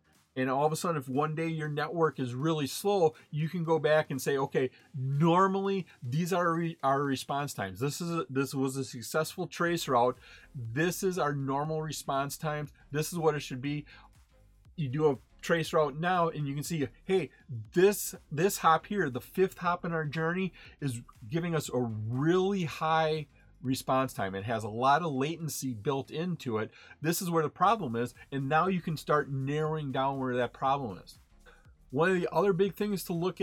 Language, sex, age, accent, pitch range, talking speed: English, male, 40-59, American, 130-165 Hz, 195 wpm